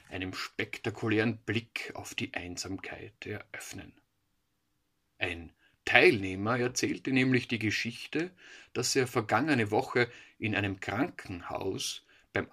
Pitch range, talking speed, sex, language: 100-125 Hz, 100 wpm, male, German